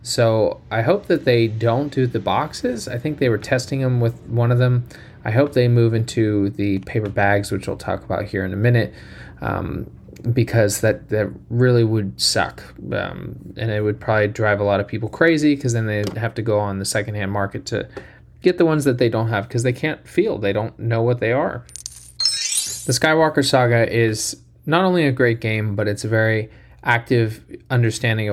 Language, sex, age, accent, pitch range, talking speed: English, male, 20-39, American, 105-125 Hz, 205 wpm